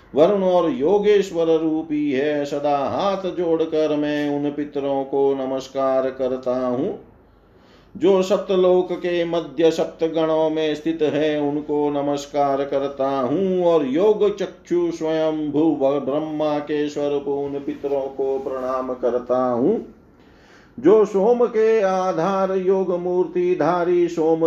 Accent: native